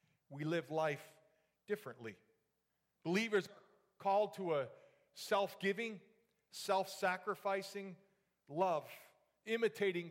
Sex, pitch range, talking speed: male, 155-195 Hz, 75 wpm